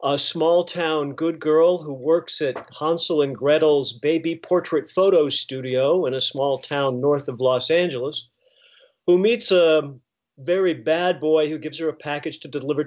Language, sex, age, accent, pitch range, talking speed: English, male, 50-69, American, 140-165 Hz, 170 wpm